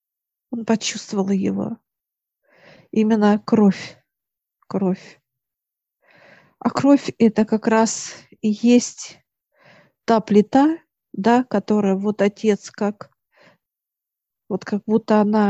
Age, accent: 50-69, native